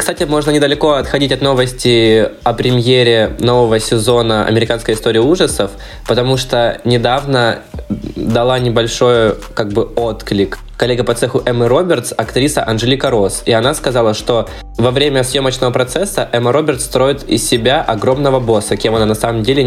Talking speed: 150 wpm